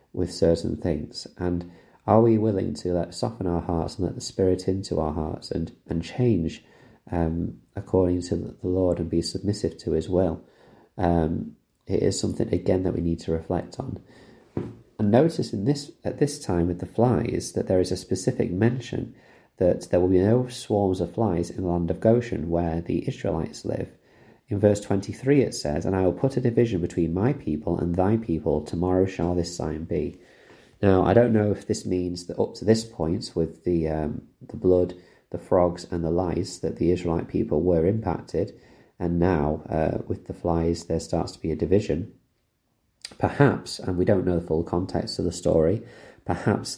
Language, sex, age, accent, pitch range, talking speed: English, male, 30-49, British, 85-105 Hz, 195 wpm